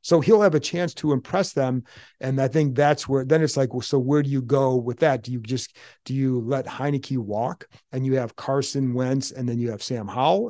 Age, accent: 40-59, American